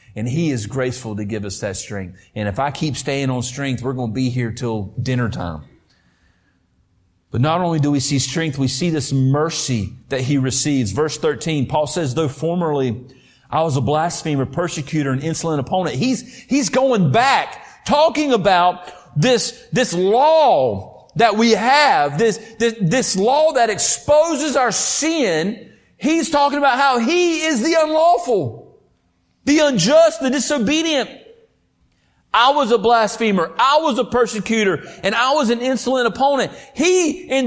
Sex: male